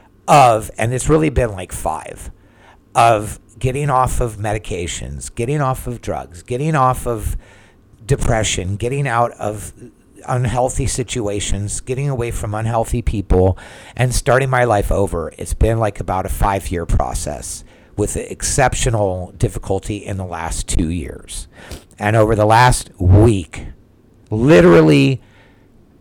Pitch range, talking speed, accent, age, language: 95-125 Hz, 130 wpm, American, 50-69, English